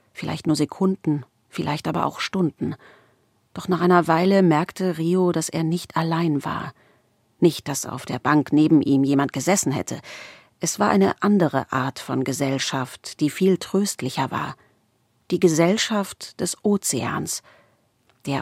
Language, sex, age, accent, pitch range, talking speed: German, female, 40-59, German, 135-180 Hz, 145 wpm